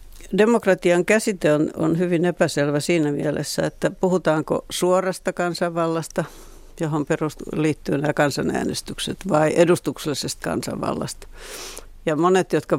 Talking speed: 110 wpm